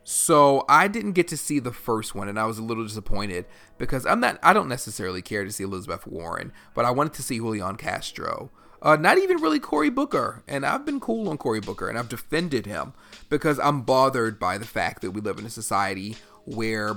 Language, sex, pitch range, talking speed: English, male, 105-155 Hz, 225 wpm